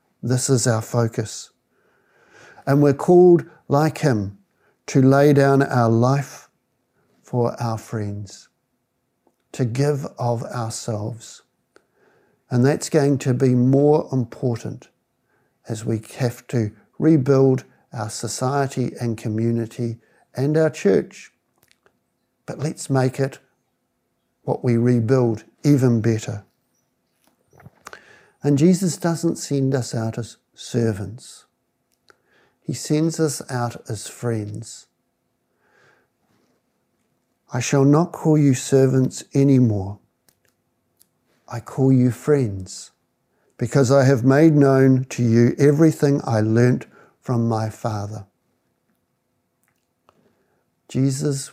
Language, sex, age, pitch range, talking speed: English, male, 60-79, 115-140 Hz, 100 wpm